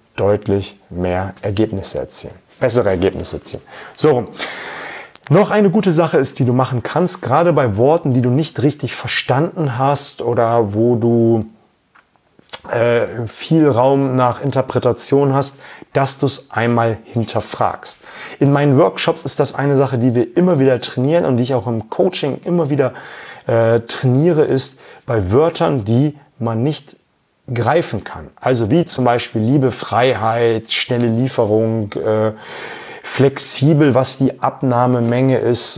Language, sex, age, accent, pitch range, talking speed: German, male, 30-49, German, 115-145 Hz, 140 wpm